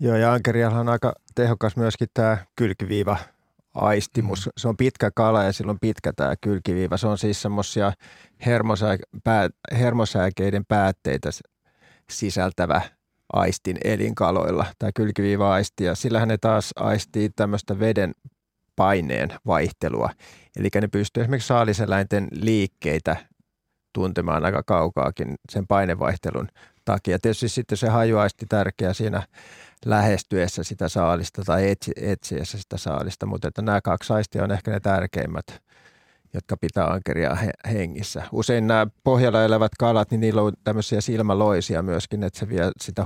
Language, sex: Finnish, male